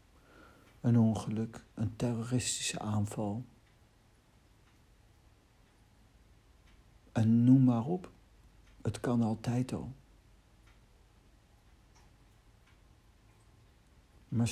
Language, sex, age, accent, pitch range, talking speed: Dutch, male, 60-79, Dutch, 105-125 Hz, 60 wpm